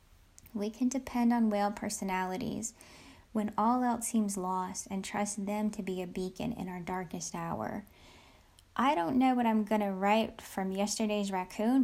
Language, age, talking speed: English, 10-29, 165 wpm